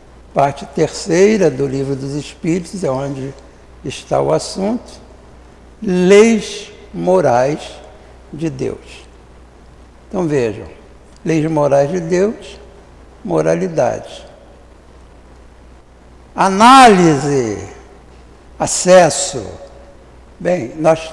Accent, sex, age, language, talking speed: Brazilian, male, 60-79, Portuguese, 75 wpm